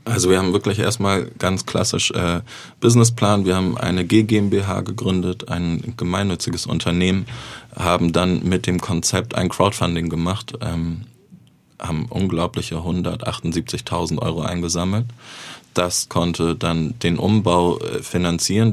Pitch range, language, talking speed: 85-110 Hz, German, 120 wpm